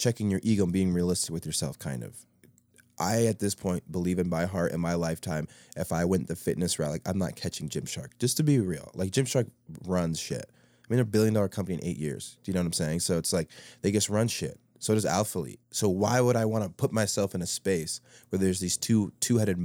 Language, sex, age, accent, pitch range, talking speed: English, male, 20-39, American, 90-110 Hz, 245 wpm